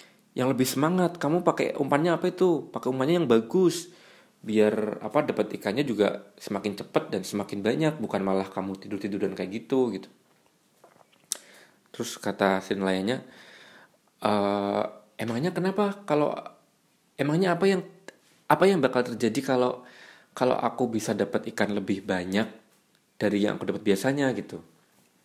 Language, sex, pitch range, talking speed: Indonesian, male, 100-150 Hz, 140 wpm